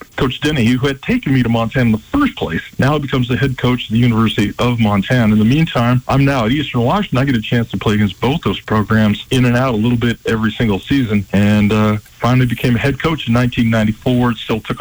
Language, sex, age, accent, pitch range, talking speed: English, male, 40-59, American, 110-130 Hz, 245 wpm